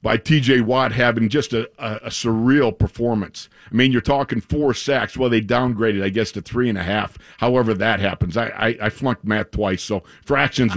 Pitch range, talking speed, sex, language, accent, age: 115-140 Hz, 210 wpm, male, English, American, 50-69